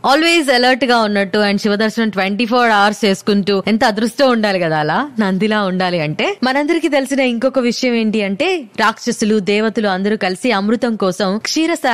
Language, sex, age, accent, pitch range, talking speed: Telugu, female, 20-39, native, 210-275 Hz, 150 wpm